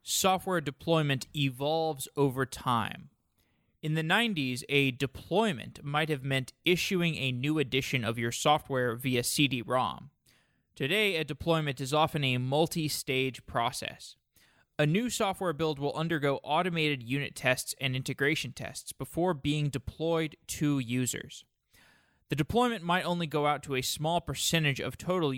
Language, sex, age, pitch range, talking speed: English, male, 20-39, 130-165 Hz, 140 wpm